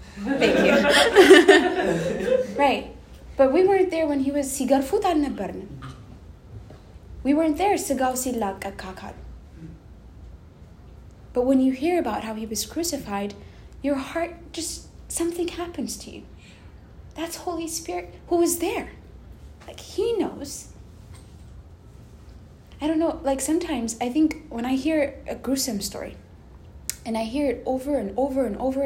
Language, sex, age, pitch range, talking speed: English, female, 20-39, 220-290 Hz, 130 wpm